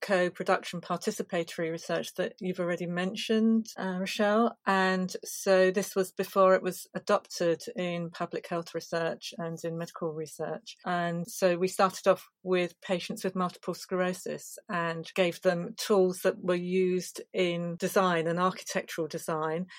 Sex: female